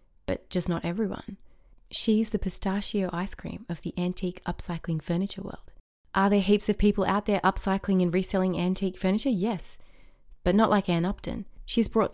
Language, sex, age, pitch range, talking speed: English, female, 30-49, 165-195 Hz, 175 wpm